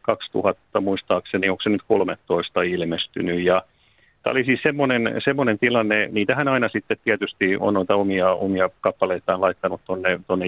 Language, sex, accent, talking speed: Finnish, male, native, 130 wpm